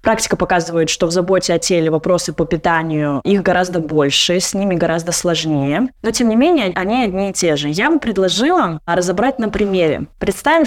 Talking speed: 185 wpm